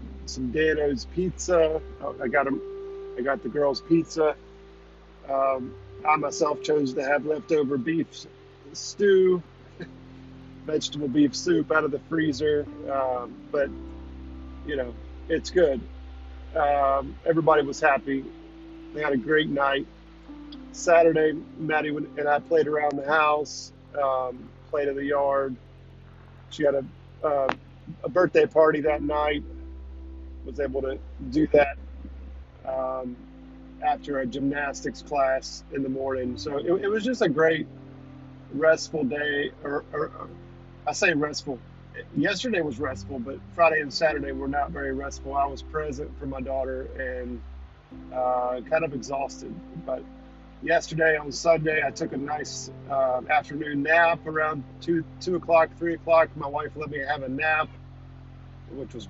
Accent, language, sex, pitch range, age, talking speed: American, English, male, 130-155 Hz, 40-59, 140 wpm